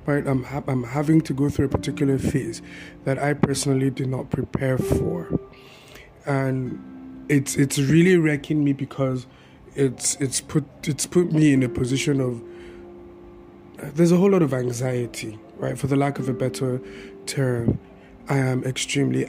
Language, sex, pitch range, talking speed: English, male, 125-140 Hz, 170 wpm